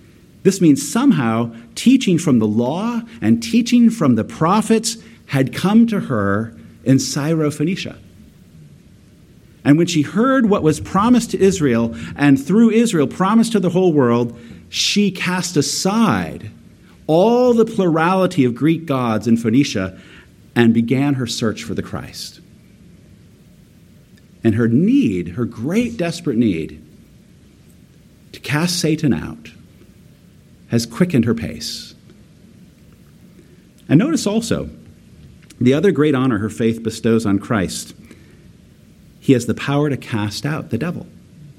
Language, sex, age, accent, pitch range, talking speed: English, male, 50-69, American, 115-190 Hz, 130 wpm